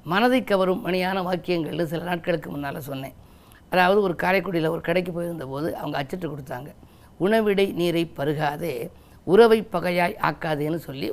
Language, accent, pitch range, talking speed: Tamil, native, 165-210 Hz, 130 wpm